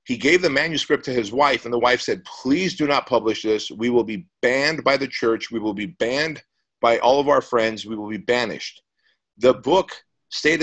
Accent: American